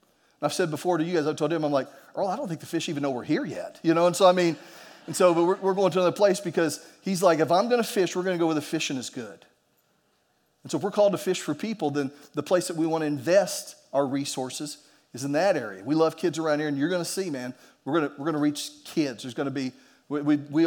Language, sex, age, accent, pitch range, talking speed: English, male, 40-59, American, 145-180 Hz, 295 wpm